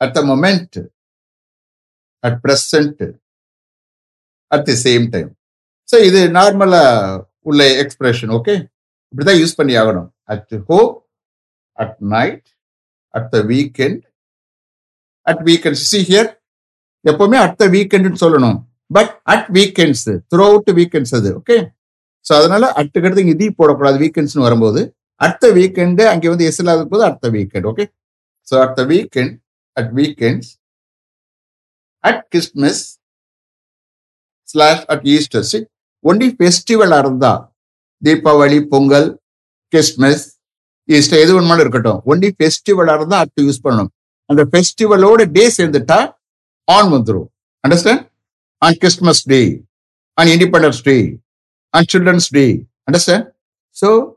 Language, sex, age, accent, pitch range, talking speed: English, male, 60-79, Indian, 130-185 Hz, 125 wpm